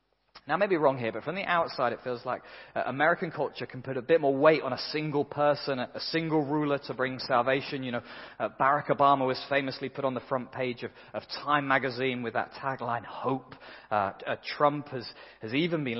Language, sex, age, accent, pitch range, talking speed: English, male, 30-49, British, 130-185 Hz, 220 wpm